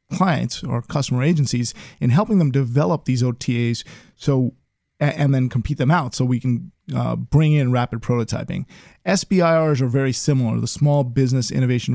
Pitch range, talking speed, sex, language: 125-155 Hz, 160 wpm, male, English